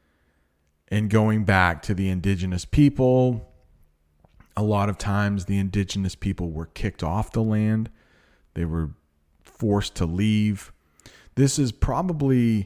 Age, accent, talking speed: 40-59, American, 130 wpm